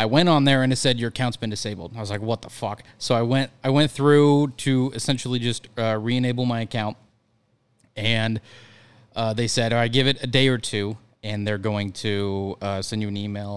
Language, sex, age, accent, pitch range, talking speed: English, male, 20-39, American, 105-125 Hz, 225 wpm